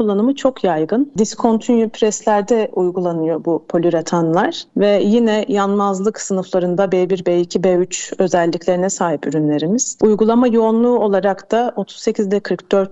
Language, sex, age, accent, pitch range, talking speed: Turkish, female, 40-59, native, 175-220 Hz, 110 wpm